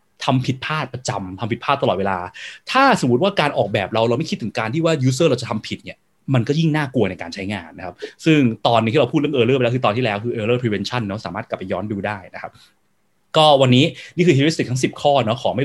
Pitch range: 115-160 Hz